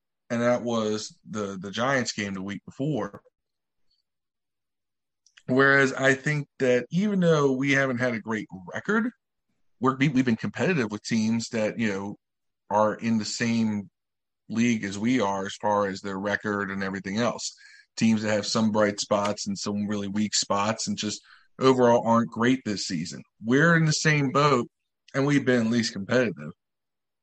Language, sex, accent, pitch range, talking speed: English, male, American, 105-145 Hz, 165 wpm